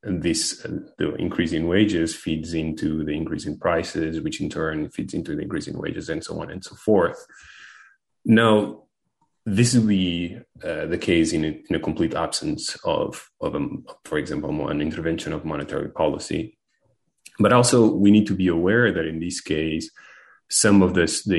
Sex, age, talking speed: male, 30-49, 185 wpm